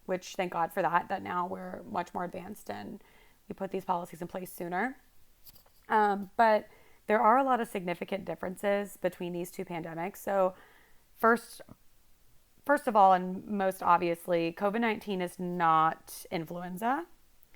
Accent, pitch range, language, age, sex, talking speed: American, 175-210 Hz, English, 30-49, female, 150 wpm